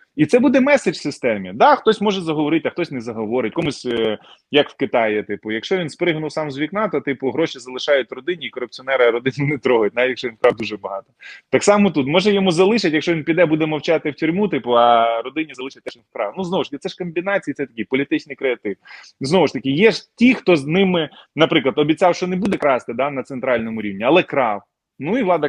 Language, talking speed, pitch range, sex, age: Ukrainian, 225 wpm, 140-195 Hz, male, 20-39